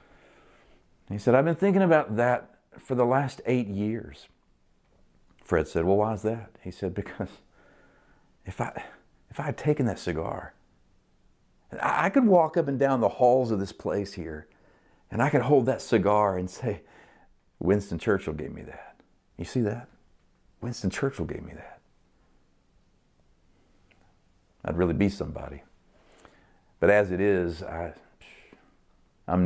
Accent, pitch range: American, 80-115 Hz